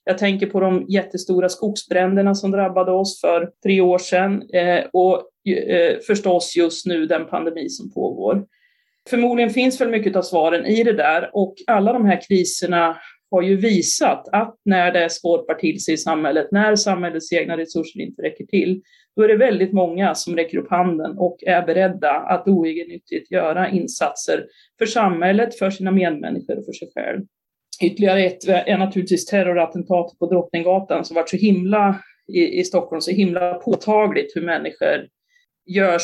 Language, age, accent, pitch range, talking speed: Swedish, 30-49, native, 175-205 Hz, 165 wpm